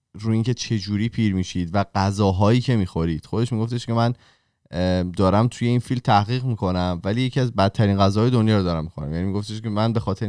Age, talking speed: 20-39, 210 wpm